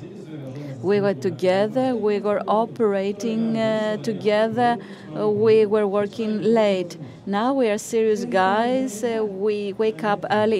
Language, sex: Greek, female